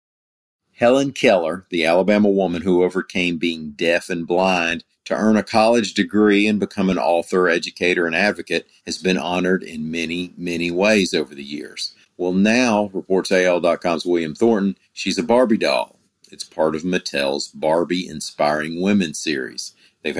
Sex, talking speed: male, 155 wpm